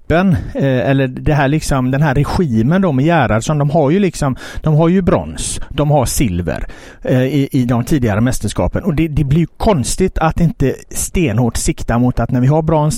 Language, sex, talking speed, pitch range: Swedish, male, 195 wpm, 115-155 Hz